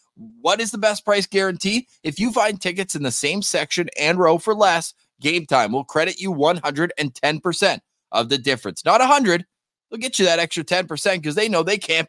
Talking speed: 200 wpm